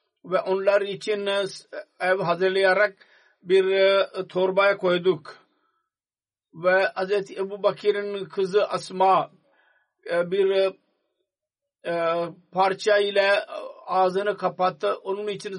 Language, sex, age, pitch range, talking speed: Turkish, male, 50-69, 180-200 Hz, 90 wpm